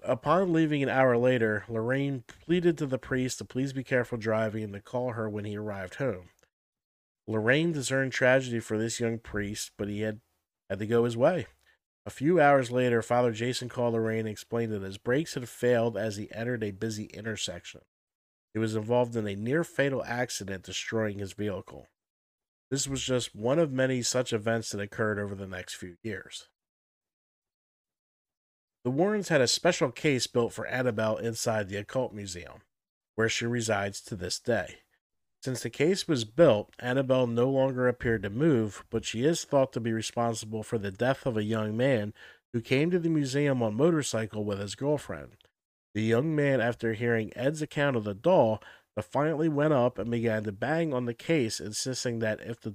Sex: male